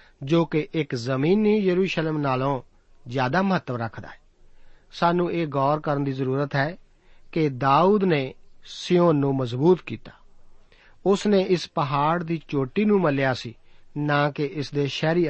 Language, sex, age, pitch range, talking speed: Punjabi, male, 50-69, 135-175 Hz, 150 wpm